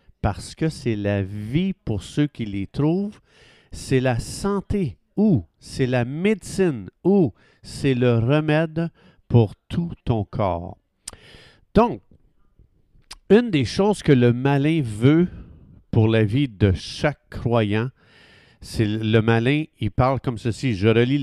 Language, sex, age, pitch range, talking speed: French, male, 50-69, 110-150 Hz, 135 wpm